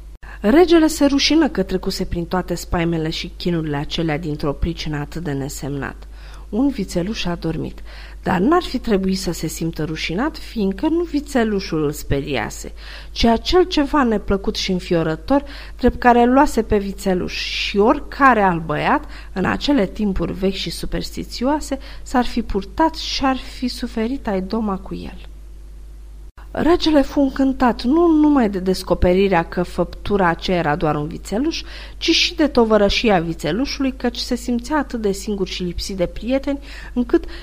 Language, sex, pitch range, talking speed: Romanian, female, 175-265 Hz, 150 wpm